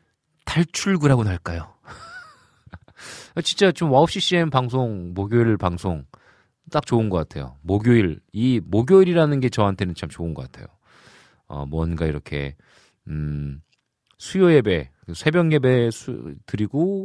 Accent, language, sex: native, Korean, male